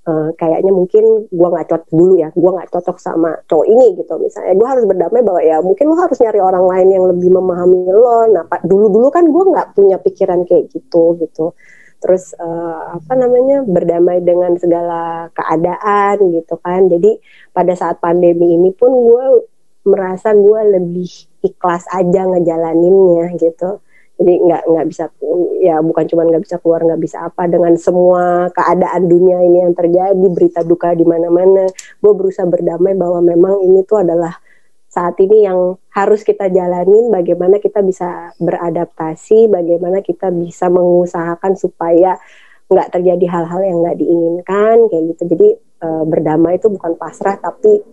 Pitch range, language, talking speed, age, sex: 170-200 Hz, Indonesian, 160 wpm, 30-49, female